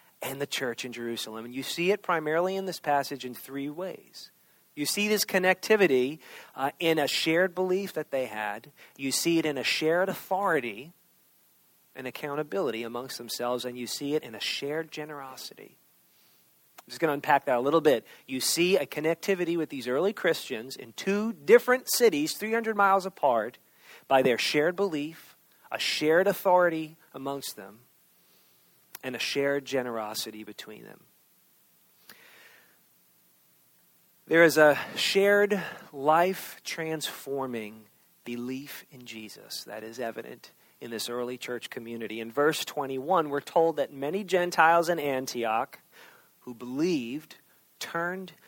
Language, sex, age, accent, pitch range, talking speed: English, male, 40-59, American, 130-175 Hz, 145 wpm